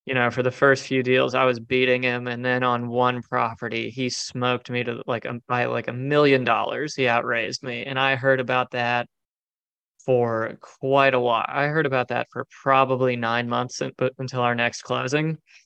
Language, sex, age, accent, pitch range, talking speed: English, male, 20-39, American, 125-135 Hz, 190 wpm